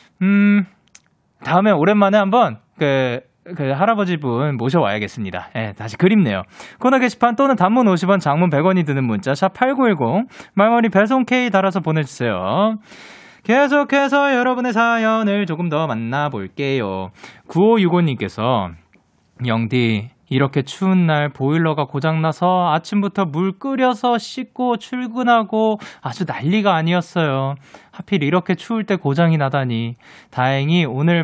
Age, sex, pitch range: 20-39, male, 130-210 Hz